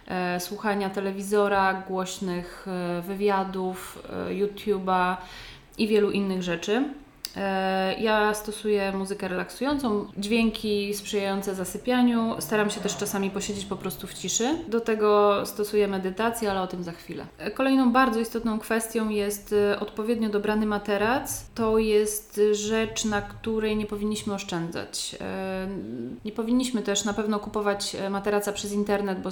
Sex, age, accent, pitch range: female, 20-39, native, 195-220 Hz